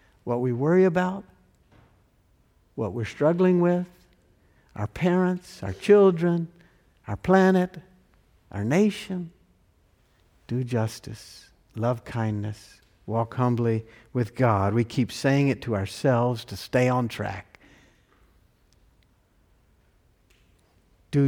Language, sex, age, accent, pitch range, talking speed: English, male, 60-79, American, 105-145 Hz, 100 wpm